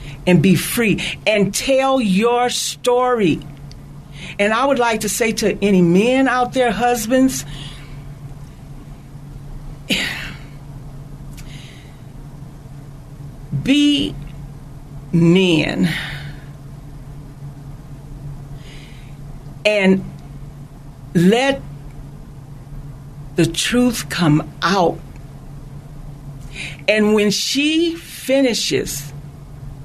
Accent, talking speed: American, 60 wpm